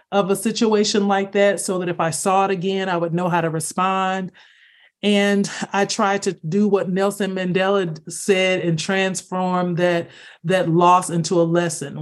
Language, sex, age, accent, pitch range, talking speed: English, male, 40-59, American, 170-200 Hz, 175 wpm